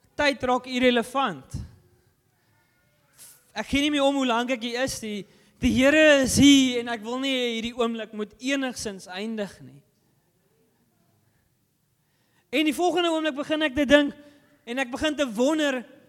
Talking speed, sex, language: 145 wpm, male, Dutch